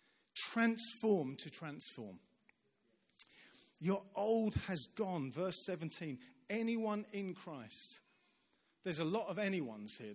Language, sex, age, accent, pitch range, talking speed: English, male, 40-59, British, 145-210 Hz, 105 wpm